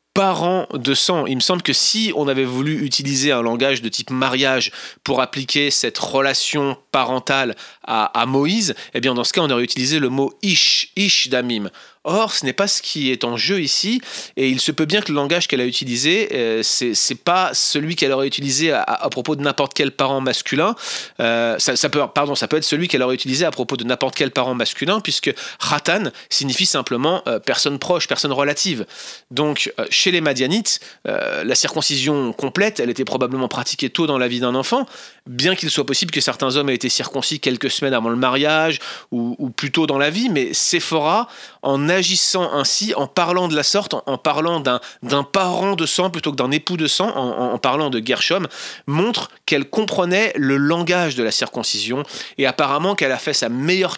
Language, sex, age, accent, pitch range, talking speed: French, male, 30-49, French, 130-170 Hz, 215 wpm